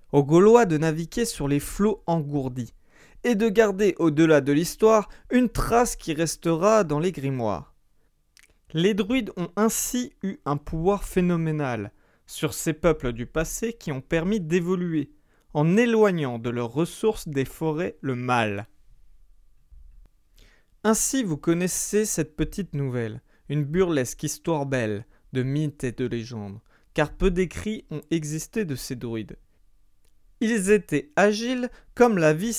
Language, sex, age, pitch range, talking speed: French, male, 30-49, 130-185 Hz, 140 wpm